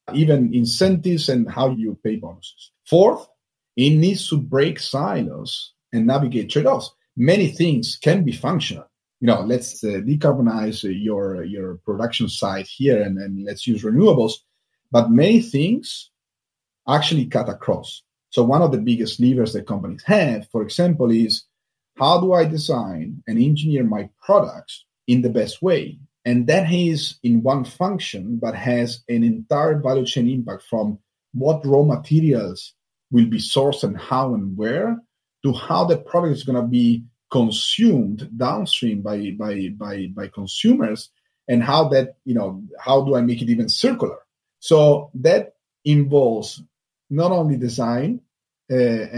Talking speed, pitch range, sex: 155 wpm, 115-155 Hz, male